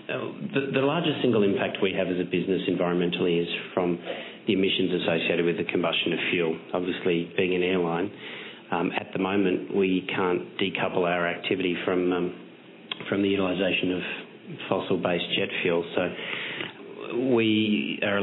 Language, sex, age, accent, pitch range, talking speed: English, male, 40-59, Australian, 90-95 Hz, 155 wpm